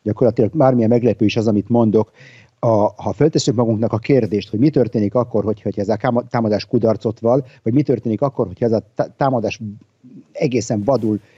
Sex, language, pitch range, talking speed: male, Hungarian, 110-145 Hz, 180 wpm